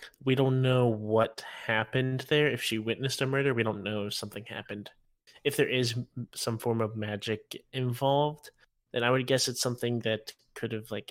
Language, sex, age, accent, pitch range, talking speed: English, male, 20-39, American, 110-125 Hz, 195 wpm